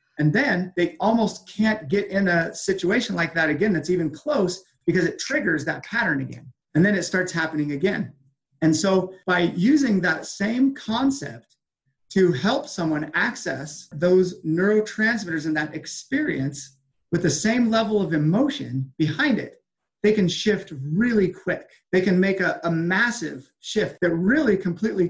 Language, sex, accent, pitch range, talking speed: English, male, American, 145-190 Hz, 160 wpm